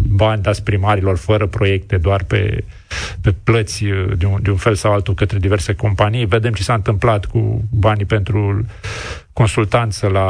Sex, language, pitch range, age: male, Romanian, 100-120 Hz, 40-59